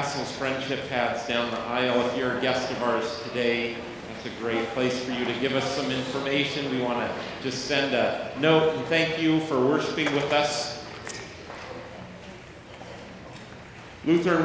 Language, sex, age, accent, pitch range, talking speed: English, male, 40-59, American, 125-145 Hz, 160 wpm